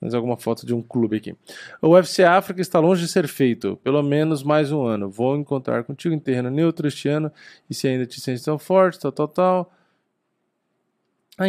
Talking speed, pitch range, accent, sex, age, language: 205 wpm, 120-155 Hz, Brazilian, male, 20-39, Portuguese